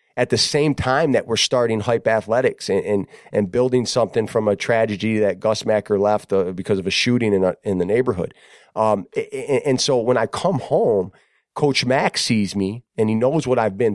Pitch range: 100-115 Hz